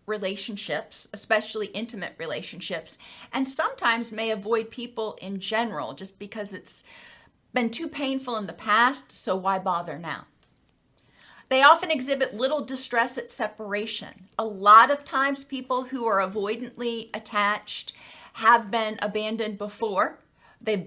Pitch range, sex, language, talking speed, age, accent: 210-265 Hz, female, English, 130 wpm, 40-59, American